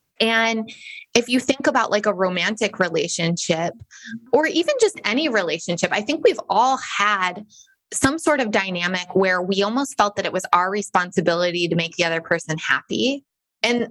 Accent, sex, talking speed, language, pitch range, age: American, female, 170 wpm, English, 185-240 Hz, 20-39